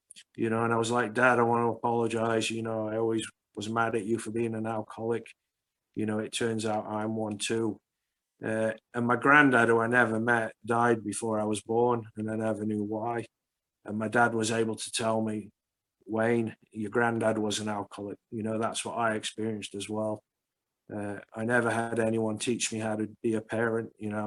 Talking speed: 215 wpm